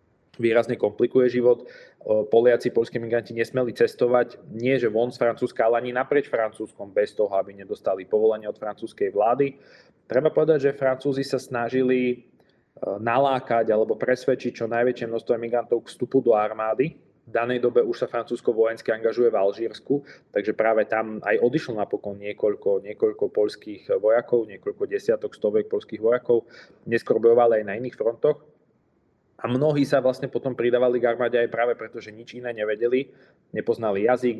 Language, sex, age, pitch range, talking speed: Slovak, male, 20-39, 115-140 Hz, 155 wpm